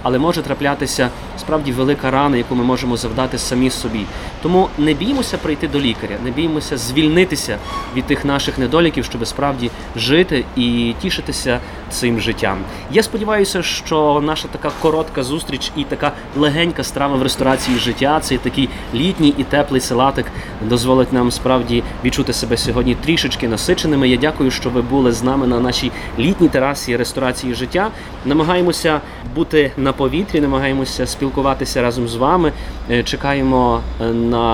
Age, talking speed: 20-39, 150 wpm